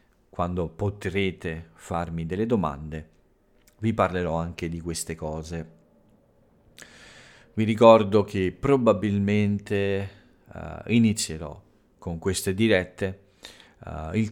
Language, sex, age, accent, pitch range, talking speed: Italian, male, 40-59, native, 85-105 Hz, 85 wpm